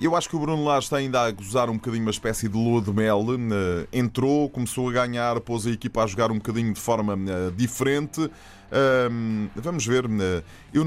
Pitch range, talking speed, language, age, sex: 105-135 Hz, 195 wpm, Portuguese, 20-39, male